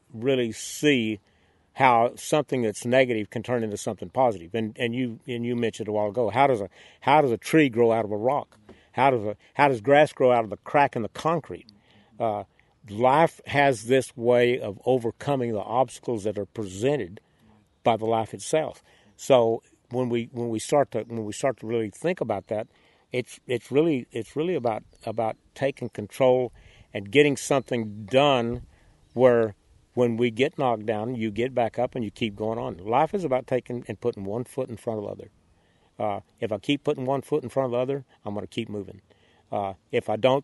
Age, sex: 50-69, male